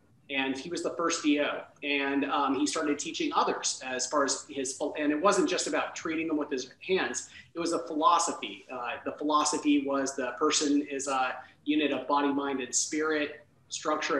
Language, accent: English, American